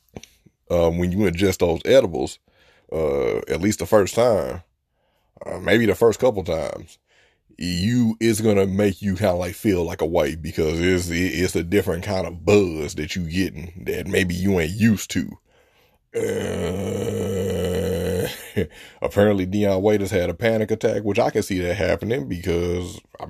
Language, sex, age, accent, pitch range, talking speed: English, male, 30-49, American, 90-110 Hz, 160 wpm